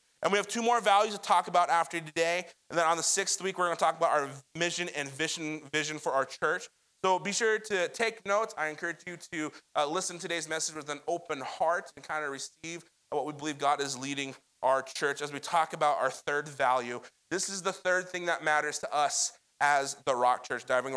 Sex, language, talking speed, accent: male, English, 230 wpm, American